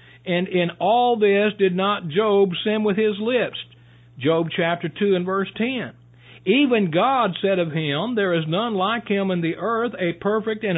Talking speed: 185 wpm